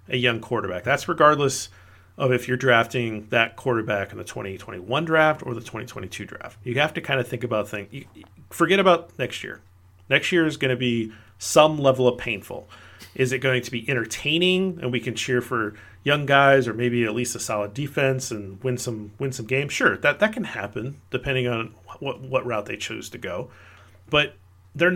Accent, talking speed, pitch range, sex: American, 195 wpm, 100-130 Hz, male